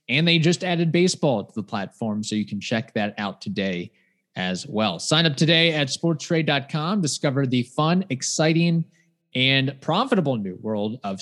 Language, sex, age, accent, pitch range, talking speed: English, male, 30-49, American, 120-165 Hz, 165 wpm